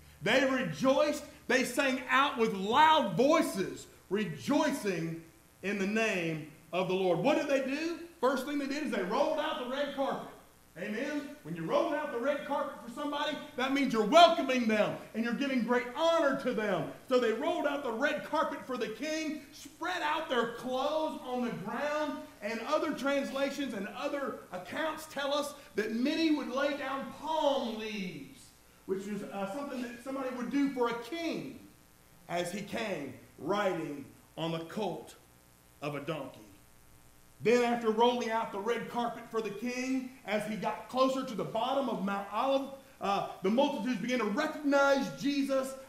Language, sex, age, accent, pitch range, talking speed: English, male, 40-59, American, 205-290 Hz, 175 wpm